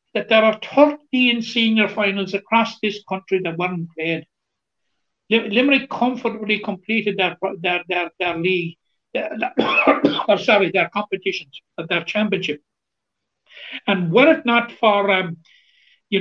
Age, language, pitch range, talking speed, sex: 60-79, English, 180-215 Hz, 130 wpm, male